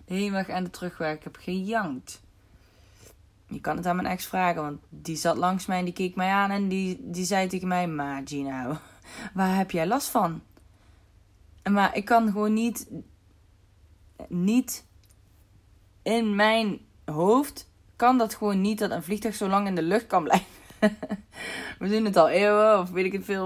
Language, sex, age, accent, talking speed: Dutch, female, 20-39, Dutch, 180 wpm